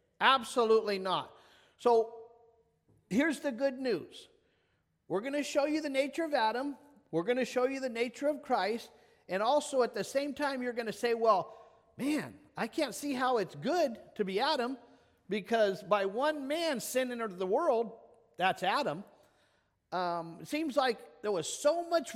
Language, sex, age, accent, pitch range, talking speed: English, male, 50-69, American, 210-285 Hz, 175 wpm